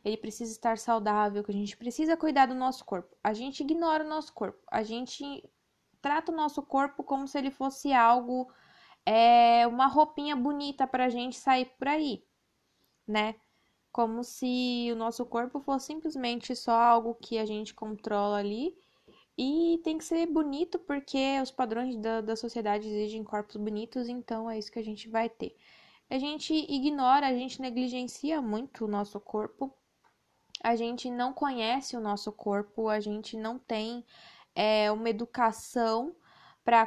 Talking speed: 160 wpm